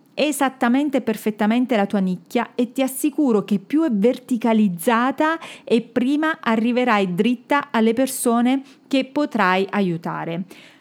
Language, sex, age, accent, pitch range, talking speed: Italian, female, 40-59, native, 195-265 Hz, 115 wpm